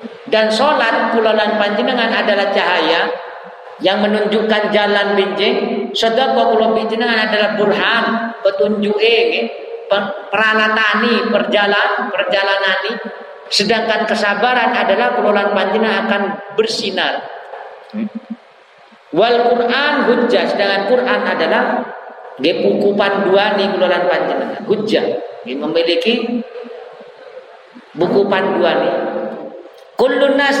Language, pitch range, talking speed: Indonesian, 185-230 Hz, 70 wpm